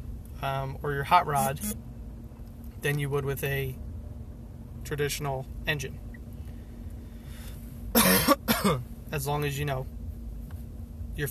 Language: English